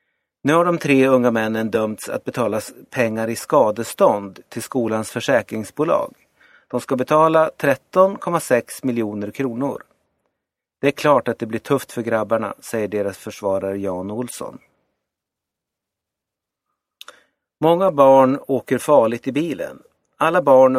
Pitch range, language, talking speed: 110-150 Hz, Swedish, 125 wpm